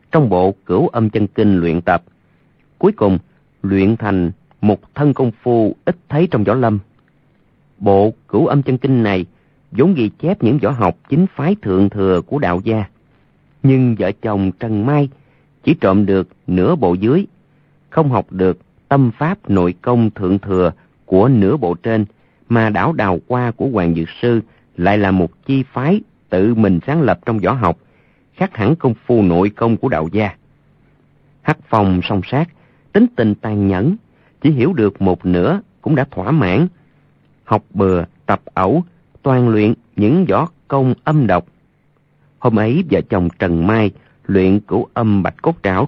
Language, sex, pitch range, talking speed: Vietnamese, male, 95-140 Hz, 175 wpm